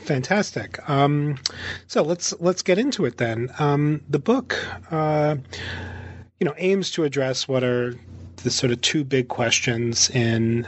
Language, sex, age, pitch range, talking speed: English, male, 30-49, 110-140 Hz, 150 wpm